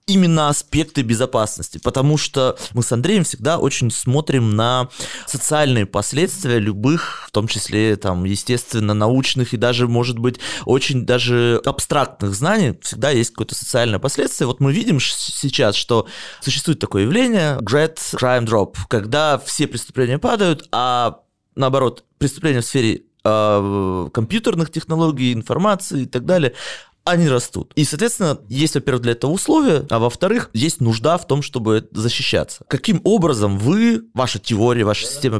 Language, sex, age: Russian, male, 20-39